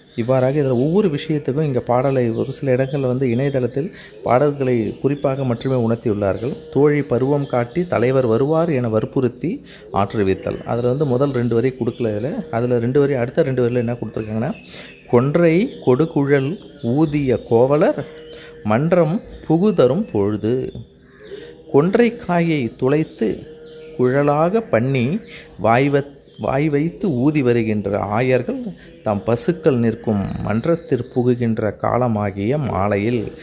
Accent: native